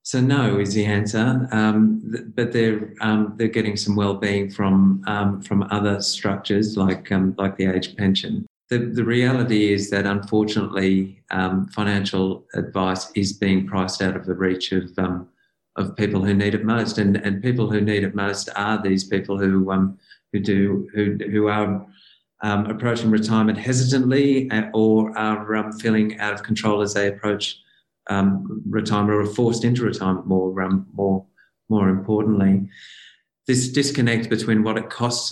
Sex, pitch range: male, 100-110 Hz